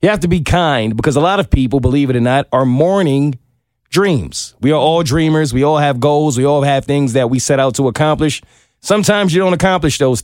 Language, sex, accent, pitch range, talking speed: English, male, American, 120-170 Hz, 235 wpm